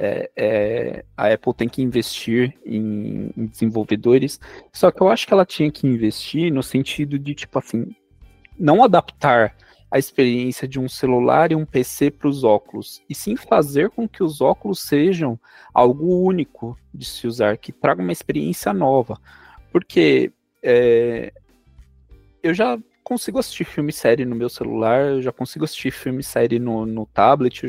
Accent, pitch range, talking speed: Brazilian, 120-150 Hz, 165 wpm